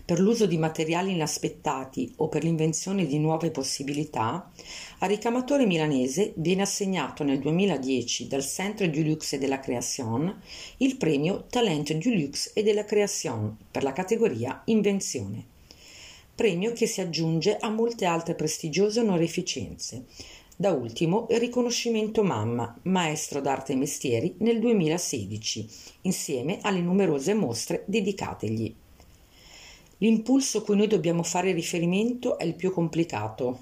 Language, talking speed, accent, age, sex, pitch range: Italian, 130 wpm, native, 50-69, female, 140-205 Hz